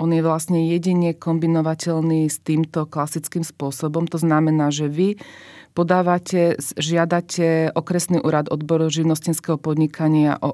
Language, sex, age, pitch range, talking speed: Slovak, female, 40-59, 145-170 Hz, 120 wpm